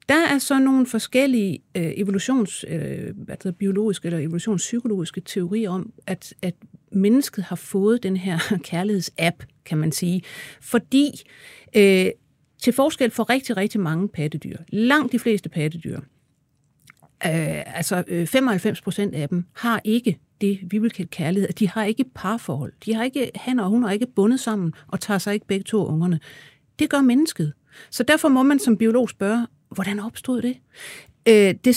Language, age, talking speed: Danish, 60-79, 165 wpm